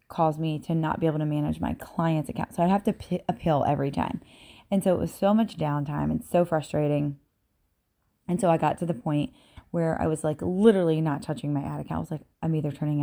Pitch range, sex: 150-185 Hz, female